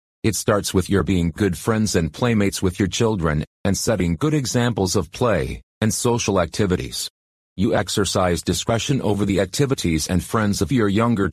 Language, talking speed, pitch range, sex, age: English, 170 wpm, 90-105 Hz, male, 40-59